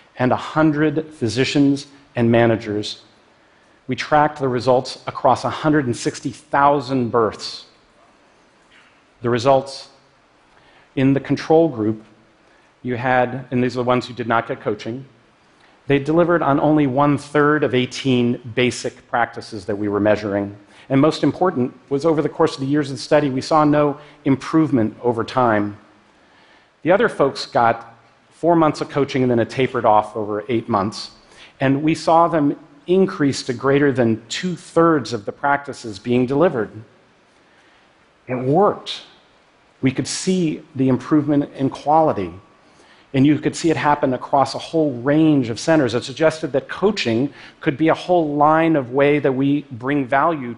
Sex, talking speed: male, 150 wpm